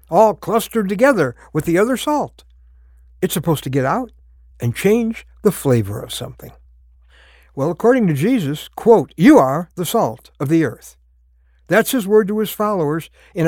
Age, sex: 60-79, male